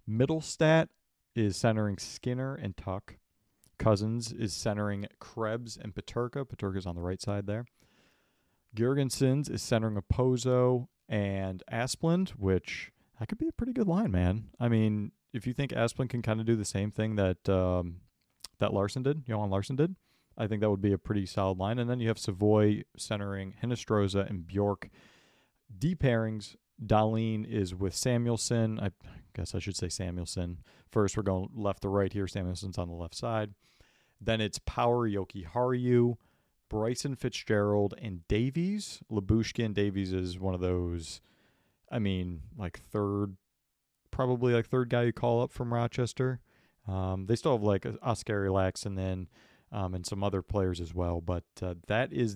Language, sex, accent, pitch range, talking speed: English, male, American, 95-120 Hz, 165 wpm